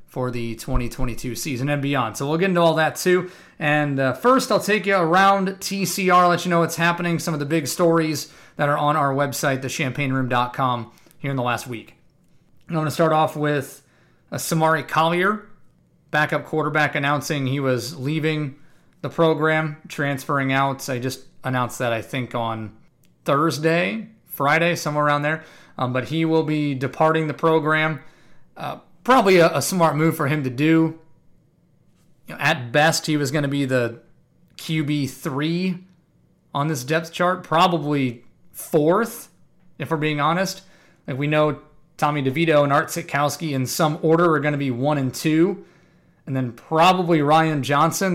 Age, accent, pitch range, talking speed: 30-49, American, 140-165 Hz, 170 wpm